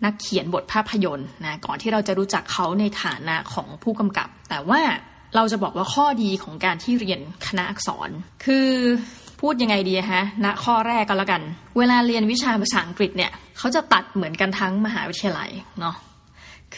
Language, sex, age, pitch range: Thai, female, 20-39, 190-230 Hz